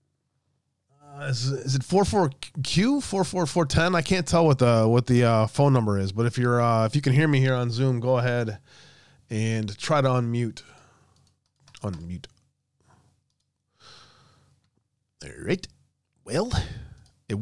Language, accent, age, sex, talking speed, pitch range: English, American, 20-39, male, 150 wpm, 120-150 Hz